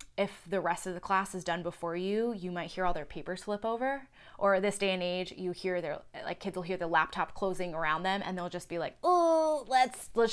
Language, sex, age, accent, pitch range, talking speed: English, female, 20-39, American, 175-210 Hz, 250 wpm